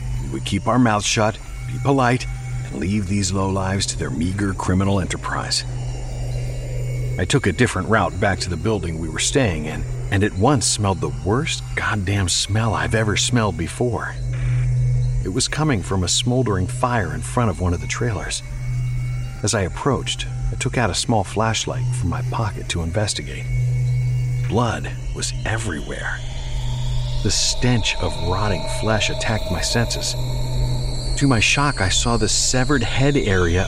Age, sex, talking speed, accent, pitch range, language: 50-69, male, 160 wpm, American, 105-125 Hz, English